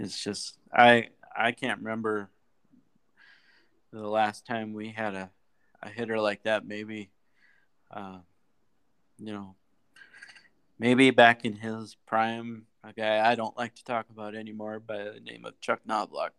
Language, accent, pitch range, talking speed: English, American, 105-120 Hz, 150 wpm